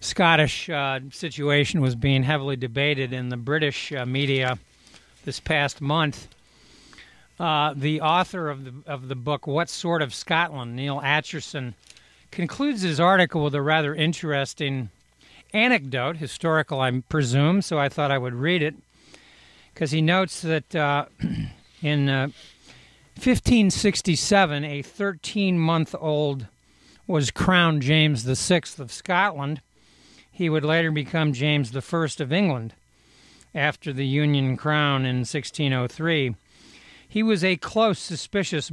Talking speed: 130 wpm